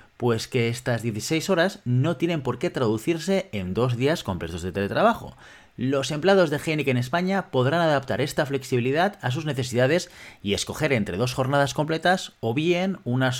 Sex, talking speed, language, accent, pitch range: male, 170 wpm, Spanish, Spanish, 115-170 Hz